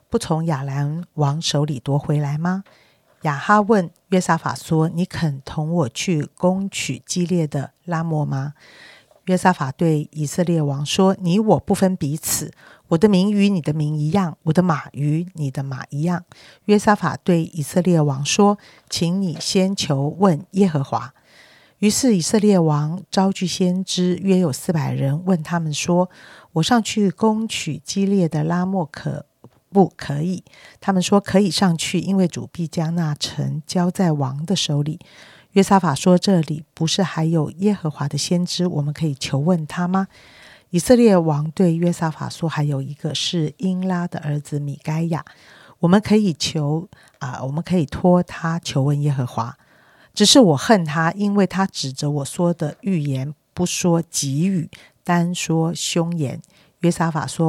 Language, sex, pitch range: Chinese, female, 150-185 Hz